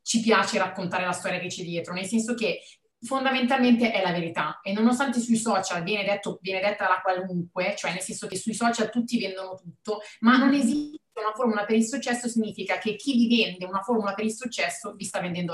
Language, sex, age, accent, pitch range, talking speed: Italian, female, 30-49, native, 195-240 Hz, 210 wpm